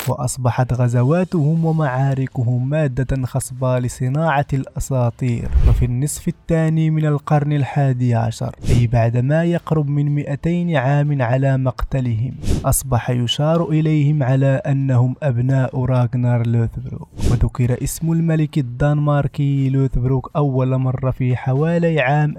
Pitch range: 130-155 Hz